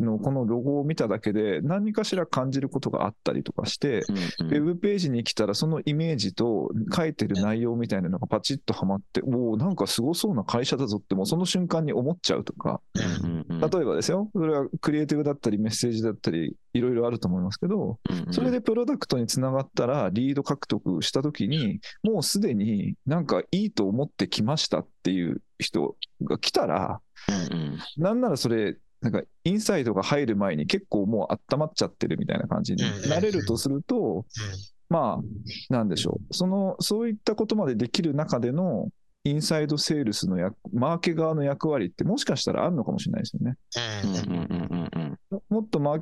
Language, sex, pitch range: Japanese, male, 115-180 Hz